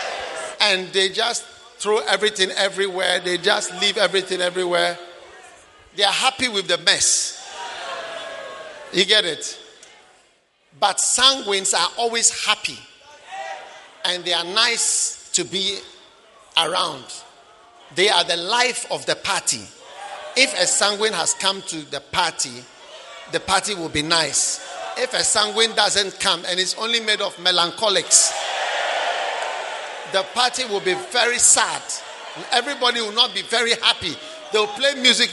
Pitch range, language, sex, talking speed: 170-225 Hz, English, male, 135 wpm